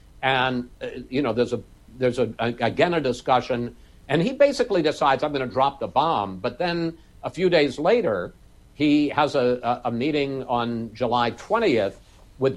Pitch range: 115-140 Hz